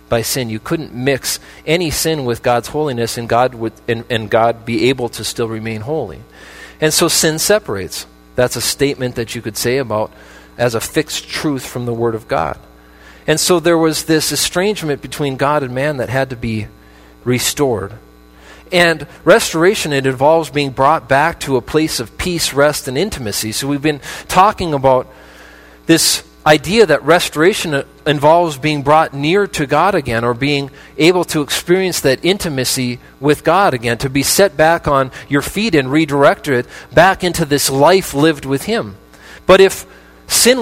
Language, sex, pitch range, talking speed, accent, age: English, male, 120-160 Hz, 180 wpm, American, 40-59